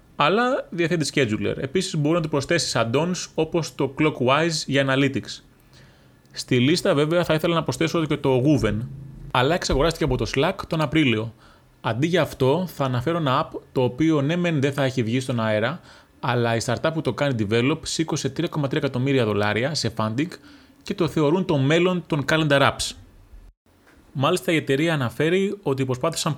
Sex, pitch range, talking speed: male, 120-160 Hz, 170 wpm